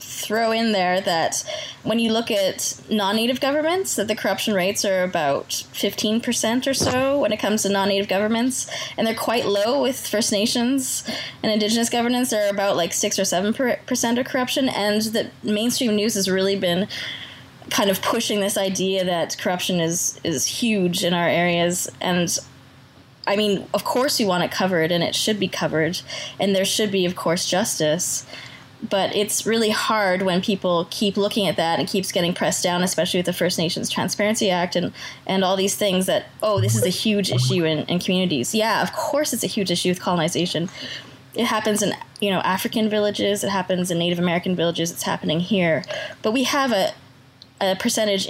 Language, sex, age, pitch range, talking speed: English, female, 20-39, 175-220 Hz, 190 wpm